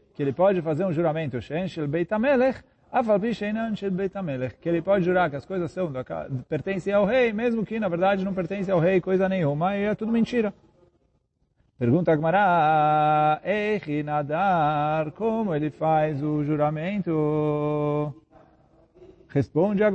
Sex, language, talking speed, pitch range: male, Portuguese, 115 wpm, 150-205 Hz